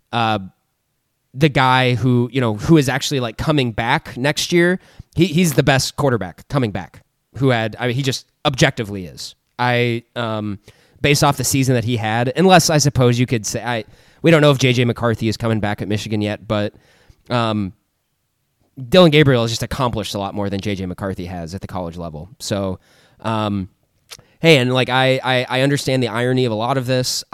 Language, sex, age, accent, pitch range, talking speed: English, male, 20-39, American, 110-130 Hz, 200 wpm